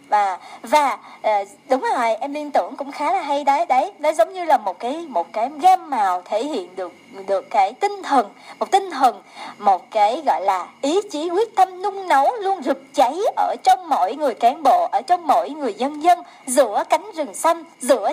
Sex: male